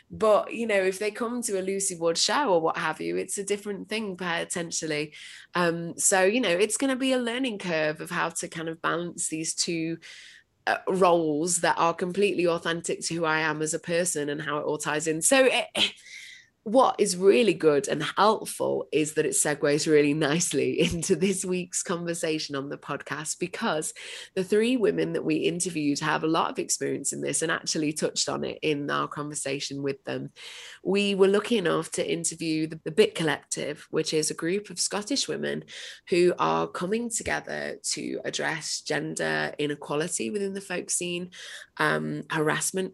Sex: female